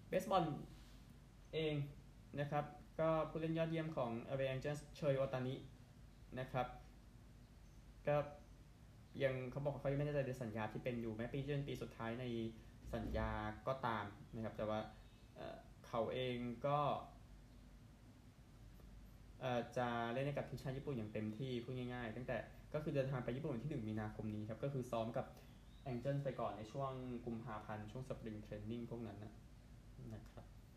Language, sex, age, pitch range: Thai, male, 20-39, 115-130 Hz